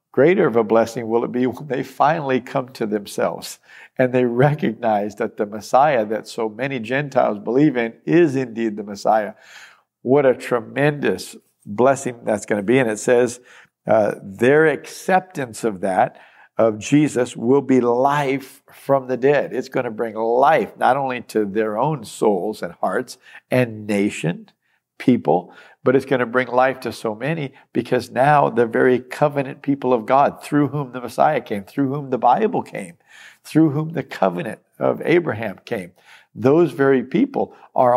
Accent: American